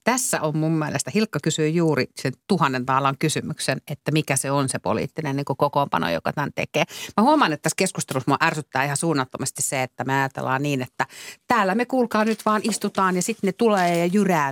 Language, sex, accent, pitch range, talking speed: Finnish, female, native, 130-185 Hz, 205 wpm